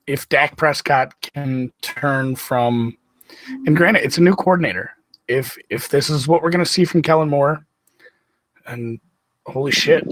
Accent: American